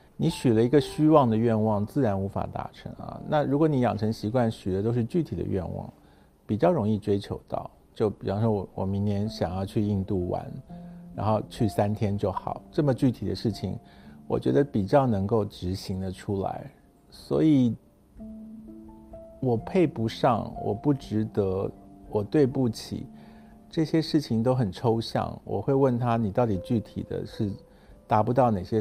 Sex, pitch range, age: male, 100-130 Hz, 50-69